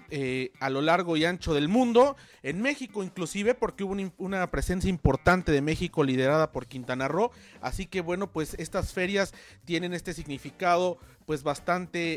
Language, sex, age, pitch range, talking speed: Spanish, male, 40-59, 145-180 Hz, 170 wpm